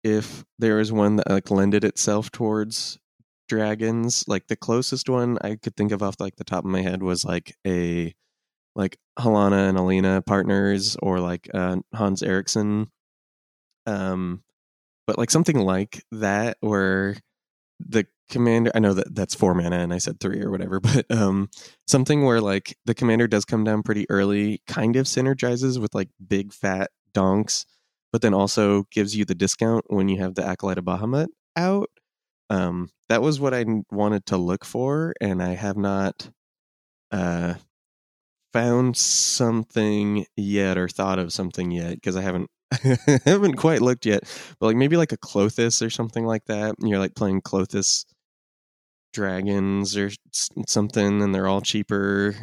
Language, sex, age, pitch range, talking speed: English, male, 20-39, 95-115 Hz, 165 wpm